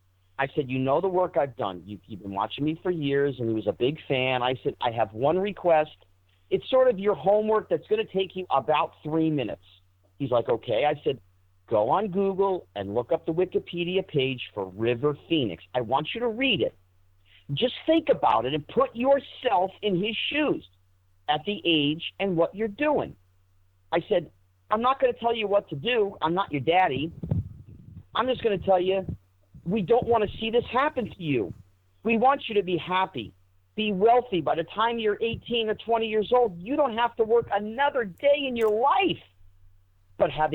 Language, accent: English, American